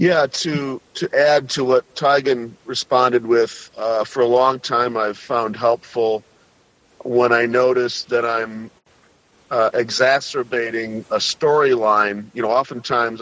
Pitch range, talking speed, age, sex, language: 110-130 Hz, 130 wpm, 40-59, male, English